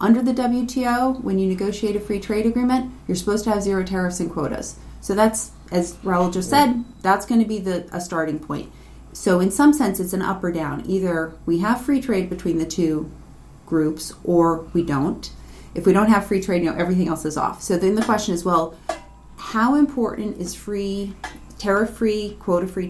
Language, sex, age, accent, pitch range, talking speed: English, female, 30-49, American, 165-210 Hz, 200 wpm